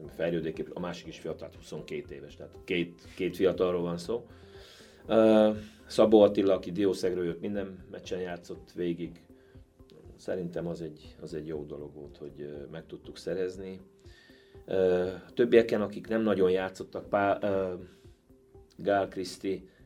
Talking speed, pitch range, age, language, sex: 125 wpm, 85-100 Hz, 30-49, Hungarian, male